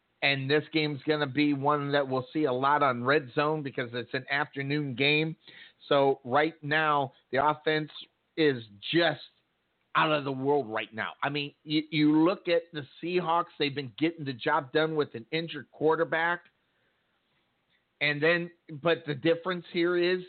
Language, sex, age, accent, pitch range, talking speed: English, male, 40-59, American, 140-170 Hz, 170 wpm